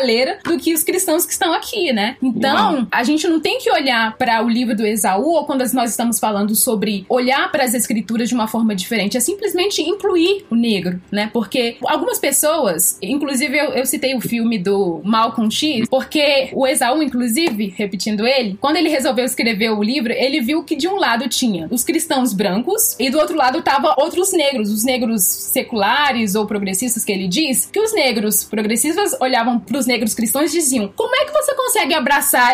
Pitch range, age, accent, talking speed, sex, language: 230-320 Hz, 10-29, Brazilian, 195 wpm, female, Portuguese